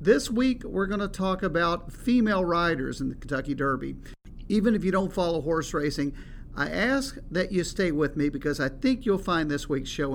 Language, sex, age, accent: English, male, 50-69, American